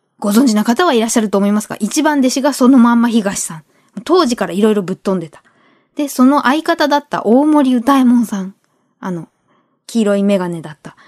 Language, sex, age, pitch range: Japanese, female, 20-39, 190-265 Hz